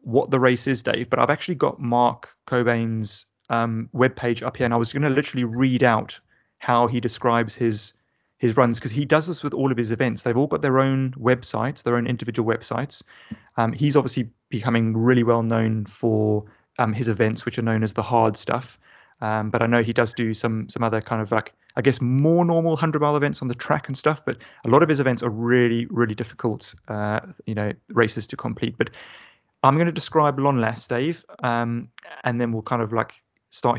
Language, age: English, 30-49